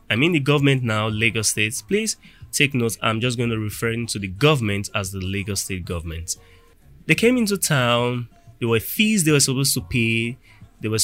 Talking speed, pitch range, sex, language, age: 200 wpm, 105-140 Hz, male, English, 20-39